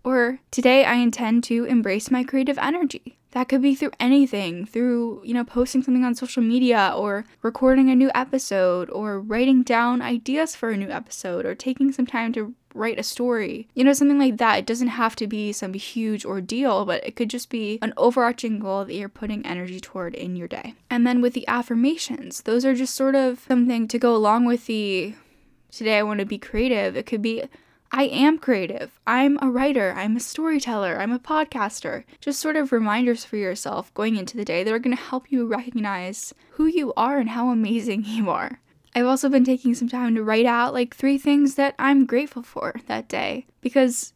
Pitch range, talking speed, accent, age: 220-260 Hz, 210 wpm, American, 10-29